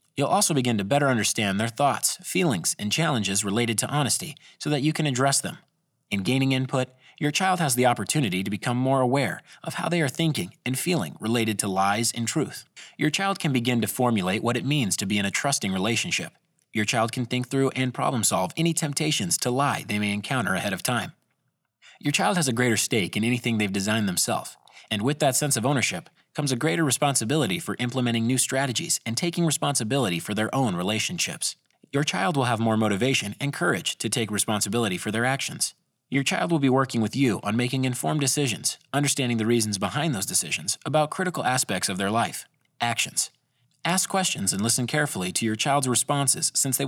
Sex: male